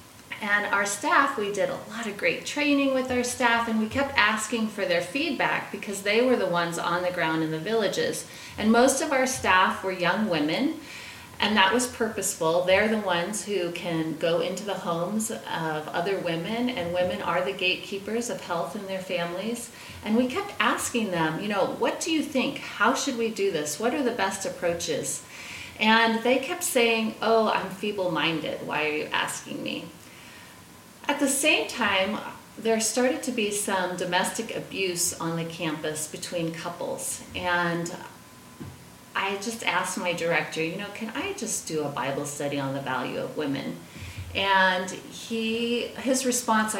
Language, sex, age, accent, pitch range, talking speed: English, female, 30-49, American, 175-235 Hz, 175 wpm